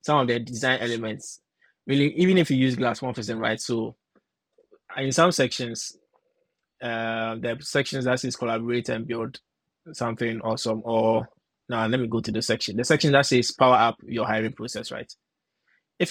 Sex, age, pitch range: male, 20-39, 115-130 Hz